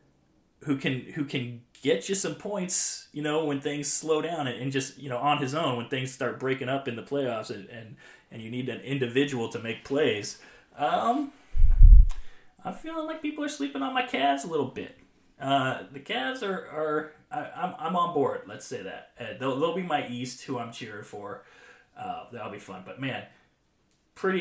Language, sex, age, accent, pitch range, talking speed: English, male, 20-39, American, 120-145 Hz, 200 wpm